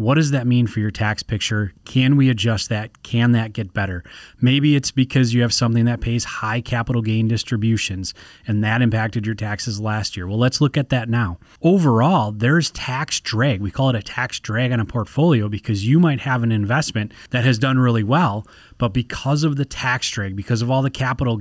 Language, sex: English, male